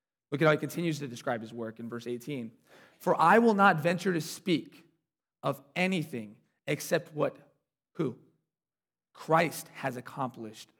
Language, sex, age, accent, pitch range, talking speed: English, male, 30-49, American, 135-205 Hz, 150 wpm